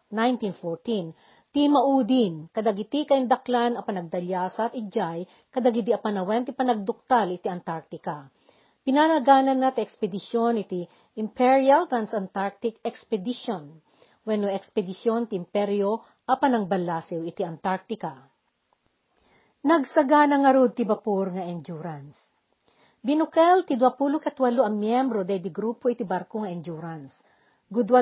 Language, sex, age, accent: Filipino, female, 50-69, native